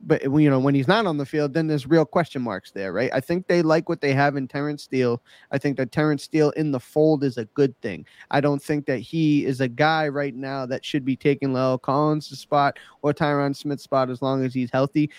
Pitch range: 130-150 Hz